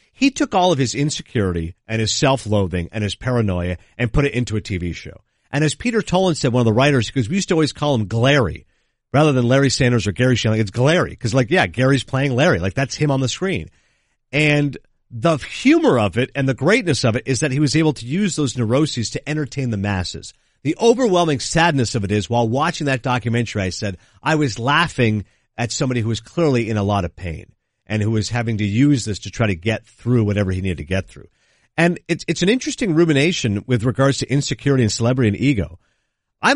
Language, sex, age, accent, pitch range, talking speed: English, male, 50-69, American, 115-160 Hz, 225 wpm